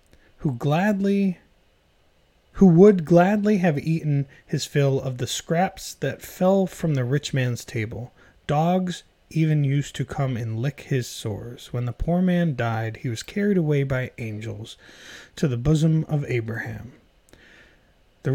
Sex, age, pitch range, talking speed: male, 30-49, 120-170 Hz, 145 wpm